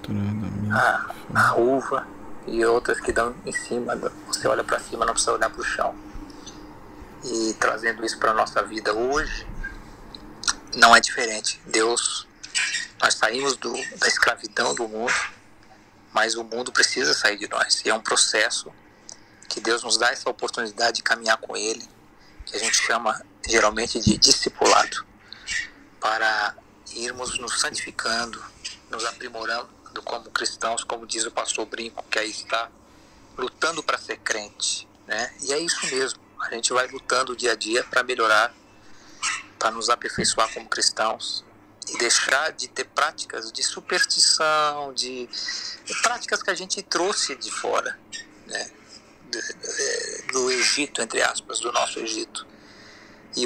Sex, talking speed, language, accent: male, 145 wpm, Portuguese, Brazilian